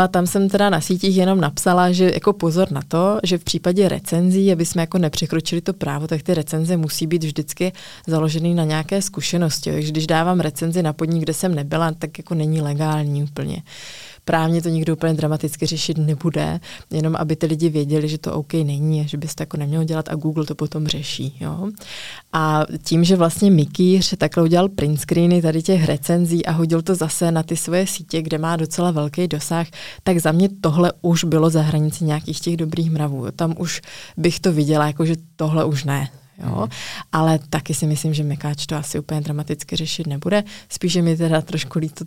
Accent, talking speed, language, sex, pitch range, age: native, 200 wpm, Czech, female, 155-170 Hz, 20-39